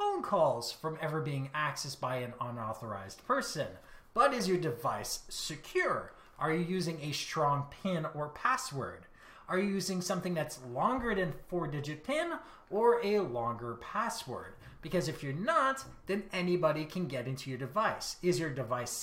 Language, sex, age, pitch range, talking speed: English, male, 30-49, 135-190 Hz, 155 wpm